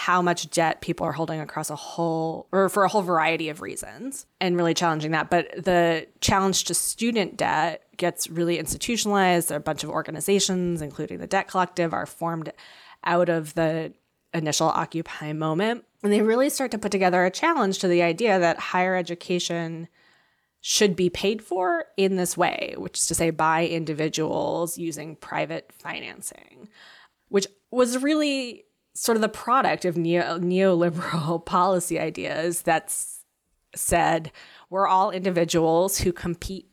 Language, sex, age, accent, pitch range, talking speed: English, female, 20-39, American, 165-185 Hz, 155 wpm